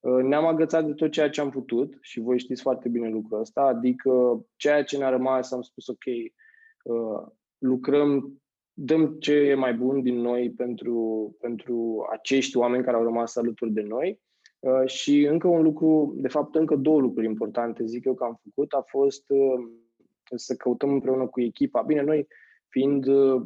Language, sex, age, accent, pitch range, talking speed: Romanian, male, 20-39, native, 115-140 Hz, 170 wpm